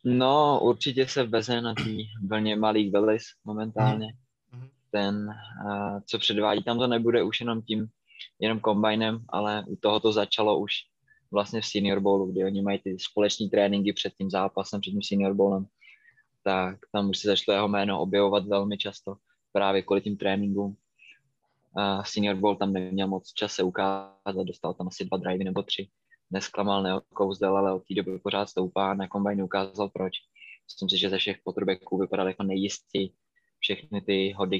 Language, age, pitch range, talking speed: Slovak, 20-39, 95-105 Hz, 165 wpm